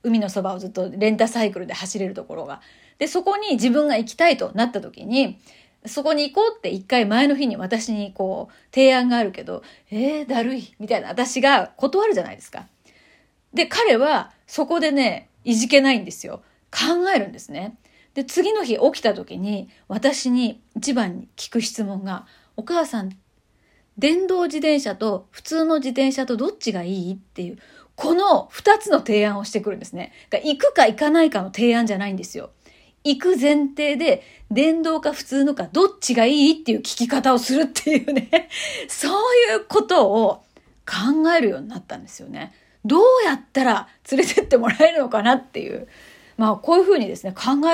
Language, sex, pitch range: Japanese, female, 215-305 Hz